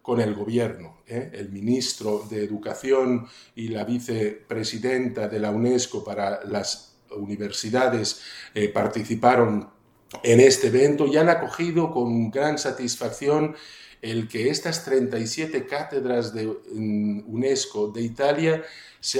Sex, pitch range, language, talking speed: male, 110-145 Hz, Italian, 115 wpm